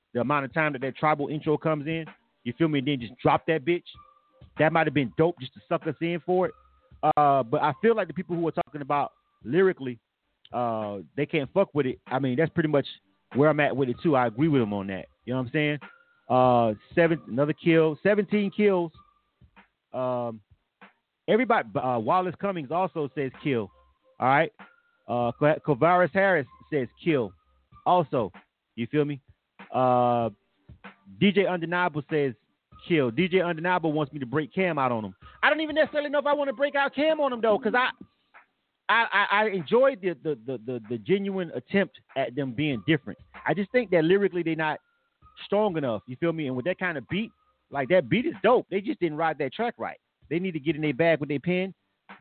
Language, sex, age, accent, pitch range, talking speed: English, male, 30-49, American, 135-190 Hz, 205 wpm